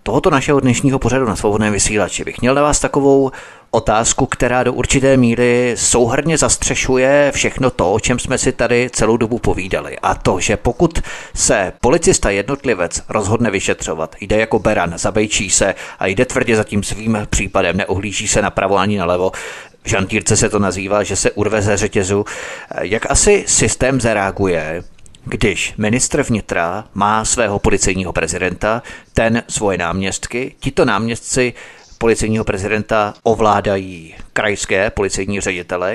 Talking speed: 145 wpm